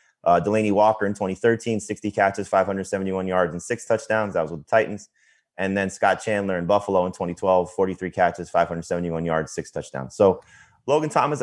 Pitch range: 90-110 Hz